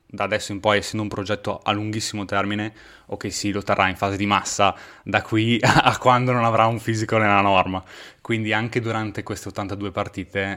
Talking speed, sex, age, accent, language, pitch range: 195 wpm, male, 20-39, native, Italian, 95-110 Hz